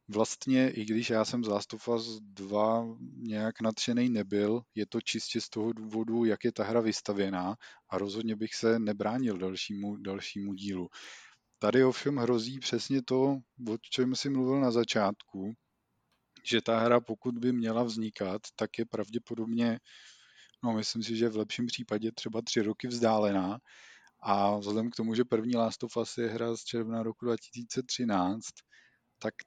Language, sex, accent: Czech, male, native